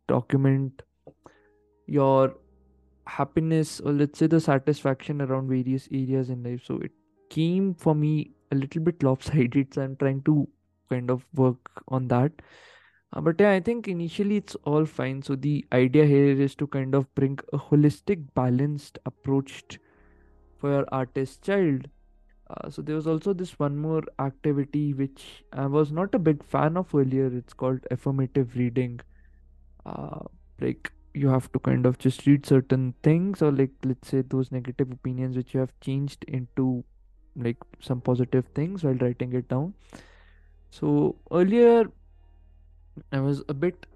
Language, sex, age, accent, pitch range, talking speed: Hindi, male, 20-39, native, 125-150 Hz, 160 wpm